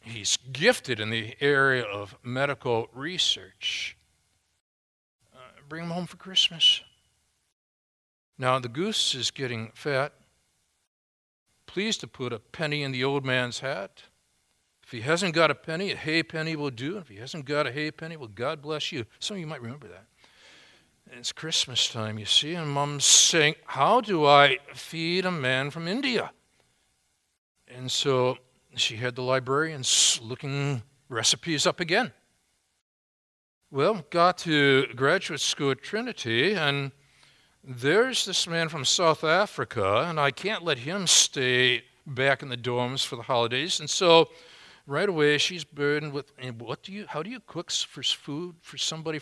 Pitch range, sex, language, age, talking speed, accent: 125-160 Hz, male, English, 60-79, 160 wpm, American